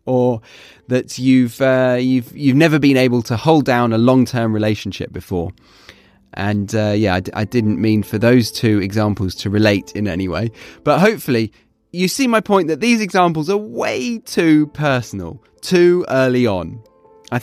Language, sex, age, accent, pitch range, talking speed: English, male, 30-49, British, 105-145 Hz, 170 wpm